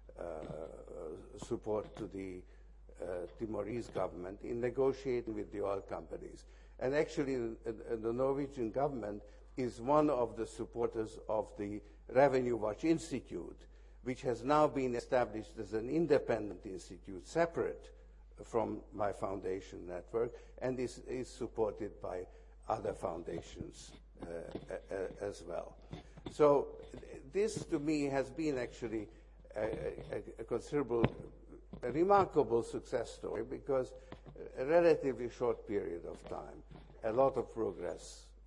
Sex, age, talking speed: male, 60-79, 120 wpm